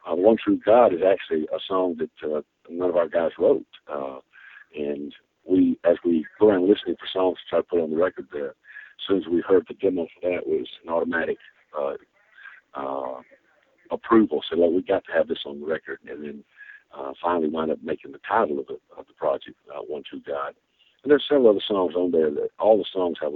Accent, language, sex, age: American, English, male, 50-69